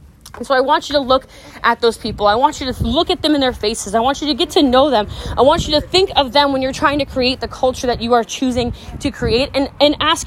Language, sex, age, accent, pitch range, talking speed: English, female, 20-39, American, 240-315 Hz, 300 wpm